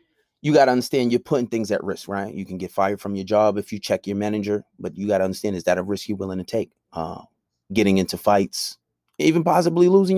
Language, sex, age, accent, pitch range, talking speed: English, male, 30-49, American, 100-115 Hz, 250 wpm